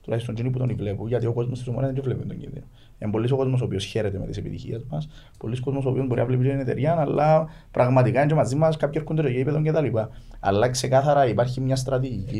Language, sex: Greek, male